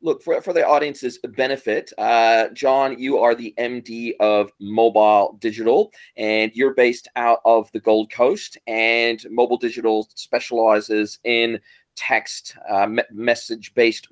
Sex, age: male, 30-49